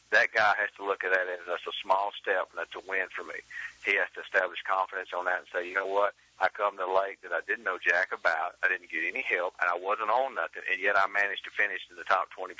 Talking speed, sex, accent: 280 wpm, male, American